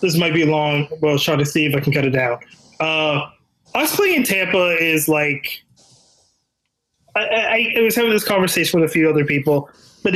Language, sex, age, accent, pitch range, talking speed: English, male, 20-39, American, 145-180 Hz, 205 wpm